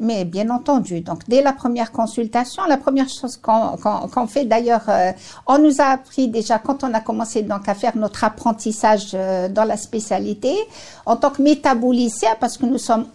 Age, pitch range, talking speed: 60-79, 220-275 Hz, 195 wpm